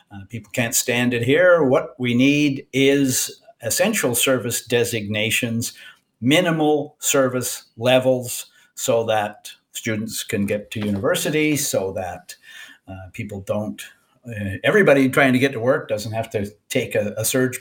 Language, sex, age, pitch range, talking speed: English, male, 50-69, 105-145 Hz, 140 wpm